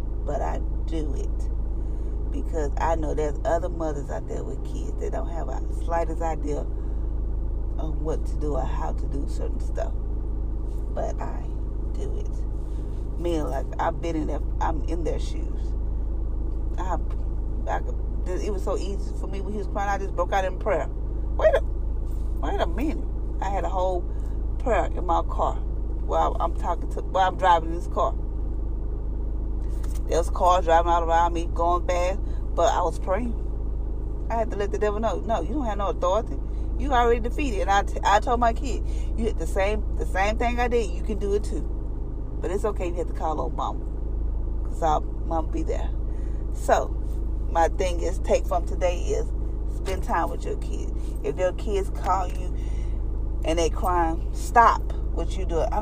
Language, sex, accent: English, female, American